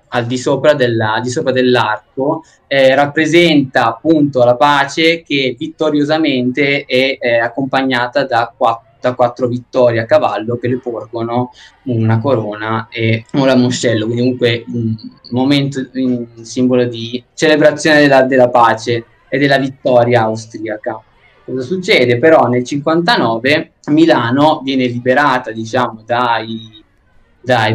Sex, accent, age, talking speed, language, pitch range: male, native, 20-39, 120 wpm, Italian, 120-150 Hz